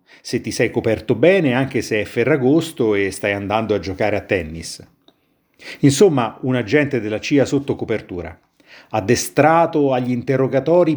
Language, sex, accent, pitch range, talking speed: Italian, male, native, 100-135 Hz, 140 wpm